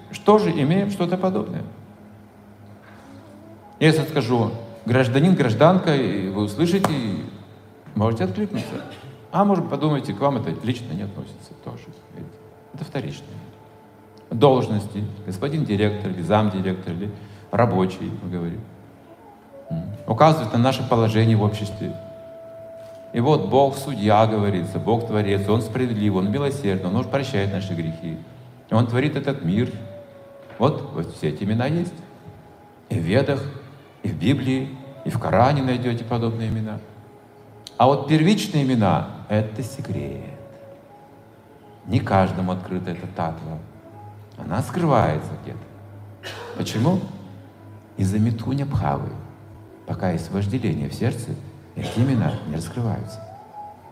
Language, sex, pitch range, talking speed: Russian, male, 100-140 Hz, 115 wpm